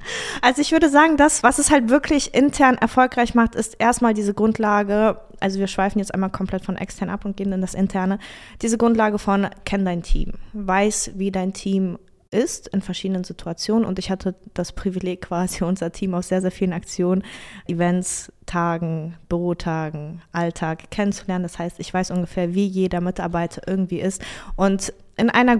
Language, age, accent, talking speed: German, 20-39, German, 175 wpm